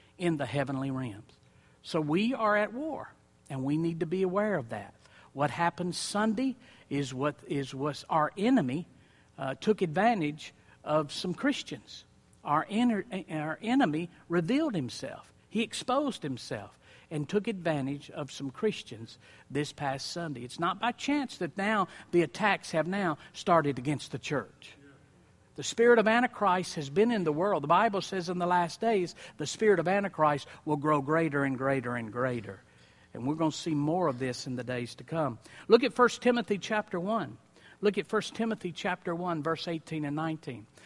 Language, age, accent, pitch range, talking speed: English, 60-79, American, 145-210 Hz, 175 wpm